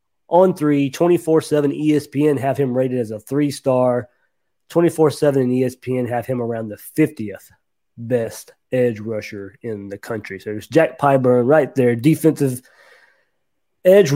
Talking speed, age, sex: 135 wpm, 30-49, male